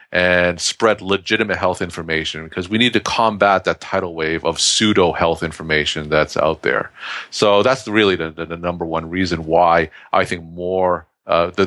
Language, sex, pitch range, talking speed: English, male, 85-105 Hz, 175 wpm